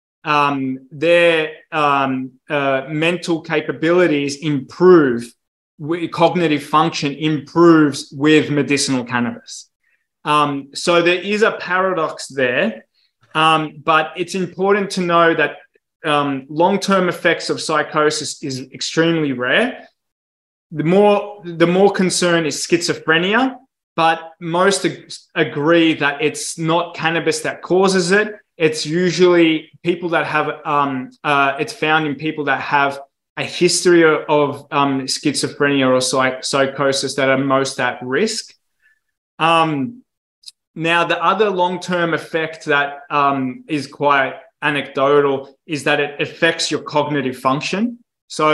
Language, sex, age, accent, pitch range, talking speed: English, male, 20-39, Australian, 140-170 Hz, 120 wpm